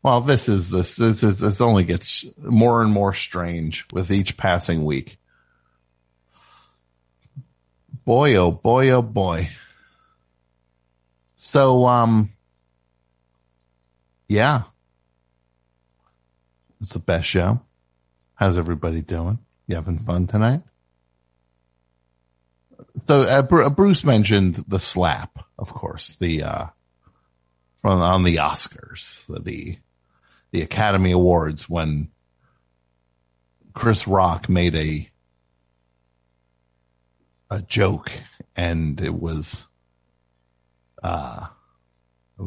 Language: English